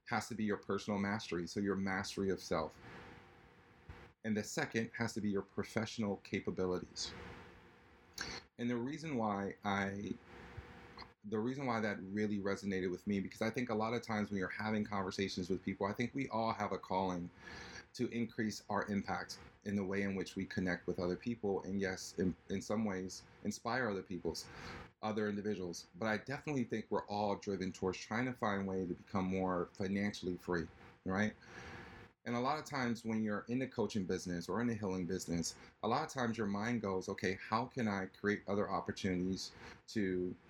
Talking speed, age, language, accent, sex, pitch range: 190 wpm, 30-49, English, American, male, 95-110 Hz